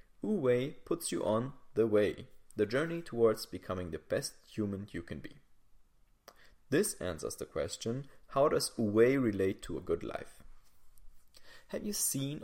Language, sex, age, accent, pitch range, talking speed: English, male, 30-49, German, 105-135 Hz, 160 wpm